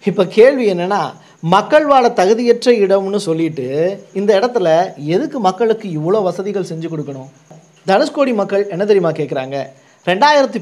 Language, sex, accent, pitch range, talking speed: Tamil, male, native, 170-235 Hz, 125 wpm